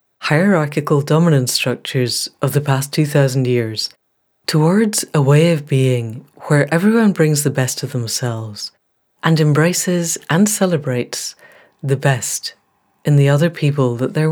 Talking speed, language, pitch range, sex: 135 wpm, English, 130-160 Hz, female